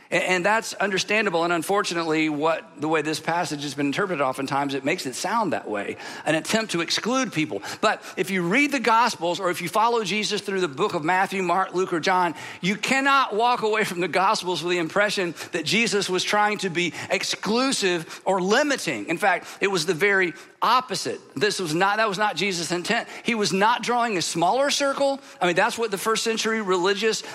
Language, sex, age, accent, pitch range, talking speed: English, male, 50-69, American, 180-225 Hz, 205 wpm